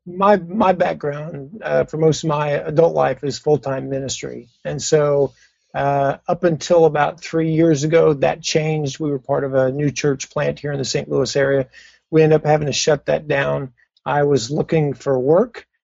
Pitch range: 140-165 Hz